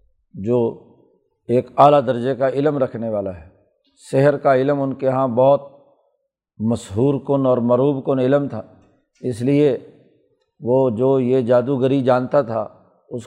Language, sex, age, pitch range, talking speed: Urdu, male, 50-69, 120-140 Hz, 145 wpm